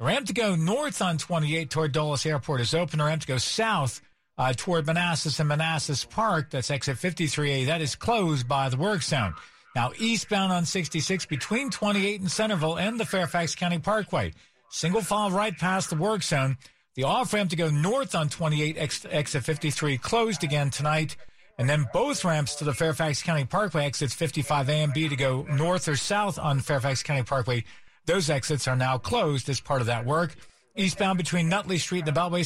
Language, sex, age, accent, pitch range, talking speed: English, male, 50-69, American, 145-185 Hz, 190 wpm